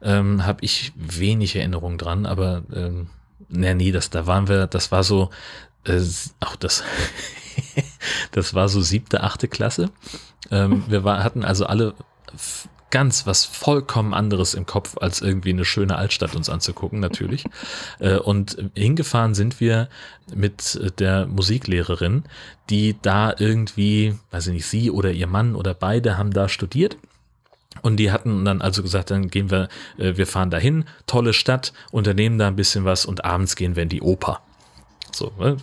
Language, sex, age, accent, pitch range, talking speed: German, male, 30-49, German, 95-115 Hz, 165 wpm